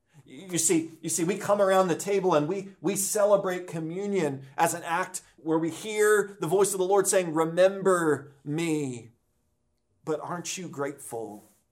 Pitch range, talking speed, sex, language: 130-180 Hz, 165 wpm, male, English